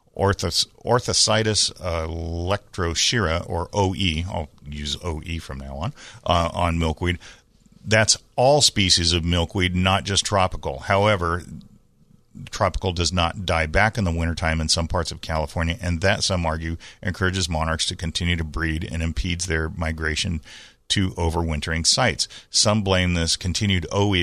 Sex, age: male, 40-59